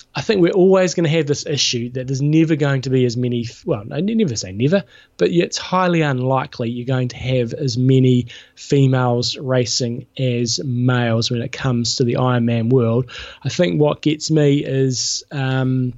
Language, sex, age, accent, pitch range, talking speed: English, male, 20-39, Australian, 130-160 Hz, 185 wpm